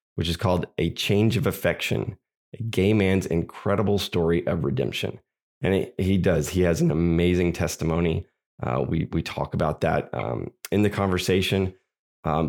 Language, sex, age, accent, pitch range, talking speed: English, male, 30-49, American, 85-95 Hz, 165 wpm